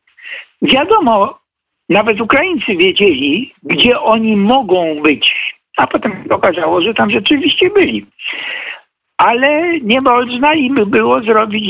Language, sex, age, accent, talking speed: Polish, male, 60-79, native, 110 wpm